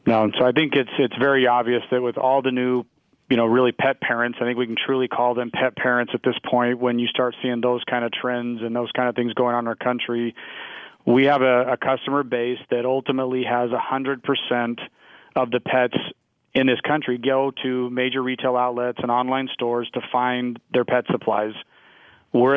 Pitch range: 120-130 Hz